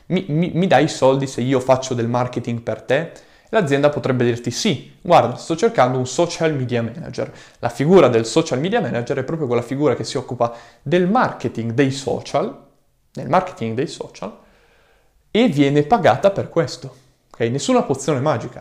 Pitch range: 125-175 Hz